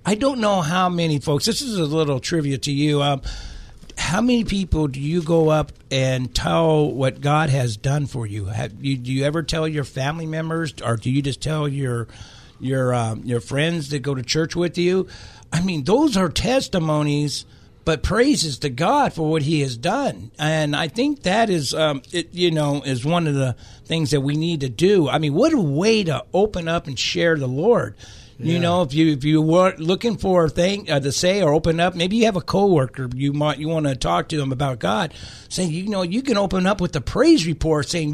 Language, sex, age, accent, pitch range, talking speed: English, male, 60-79, American, 140-185 Hz, 225 wpm